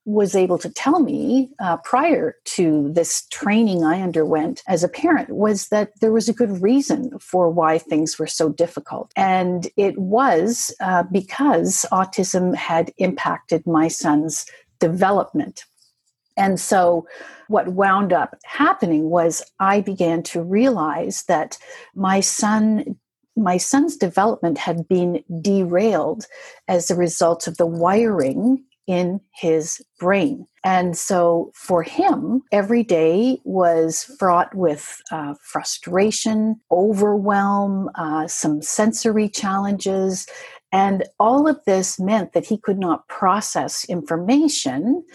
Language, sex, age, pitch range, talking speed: English, female, 50-69, 170-225 Hz, 125 wpm